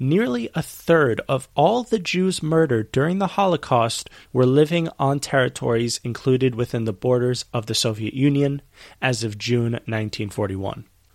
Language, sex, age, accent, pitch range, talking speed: English, male, 30-49, American, 115-150 Hz, 145 wpm